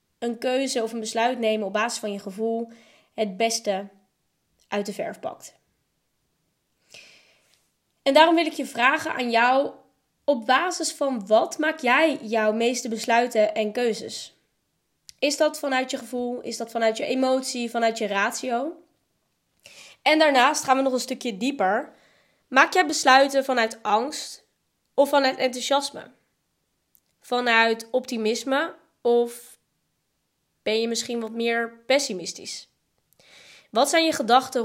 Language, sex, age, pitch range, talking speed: Dutch, female, 20-39, 225-265 Hz, 135 wpm